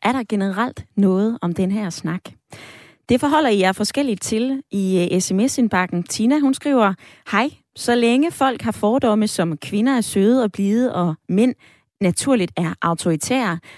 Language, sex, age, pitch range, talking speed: Danish, female, 20-39, 180-240 Hz, 150 wpm